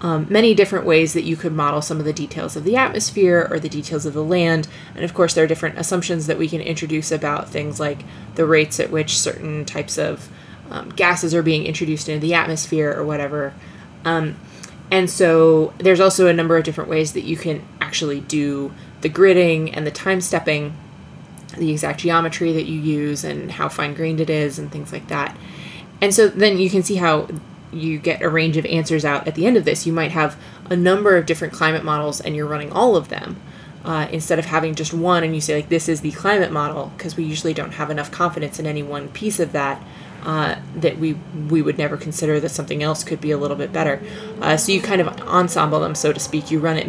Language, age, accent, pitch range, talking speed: English, 20-39, American, 155-170 Hz, 230 wpm